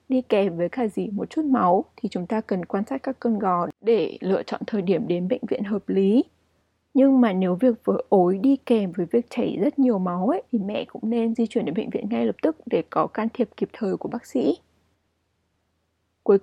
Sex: female